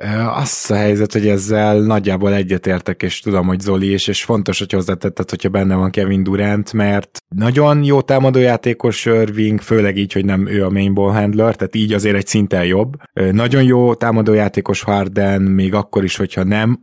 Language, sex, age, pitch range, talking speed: Hungarian, male, 20-39, 95-110 Hz, 175 wpm